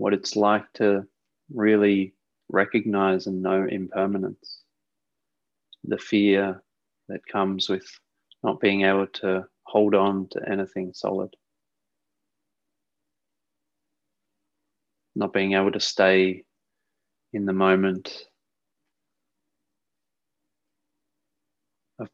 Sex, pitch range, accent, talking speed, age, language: male, 95-105 Hz, Australian, 85 wpm, 30-49, English